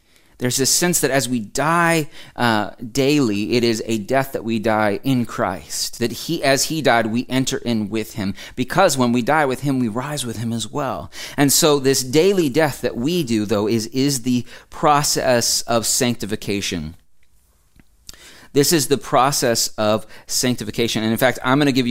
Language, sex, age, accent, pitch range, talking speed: English, male, 30-49, American, 100-130 Hz, 185 wpm